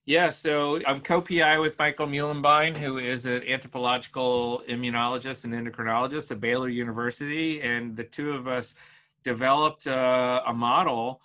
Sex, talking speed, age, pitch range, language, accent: male, 140 wpm, 40-59, 125-150 Hz, English, American